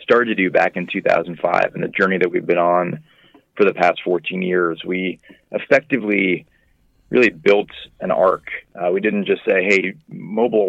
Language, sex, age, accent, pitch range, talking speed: English, male, 30-49, American, 90-105 Hz, 175 wpm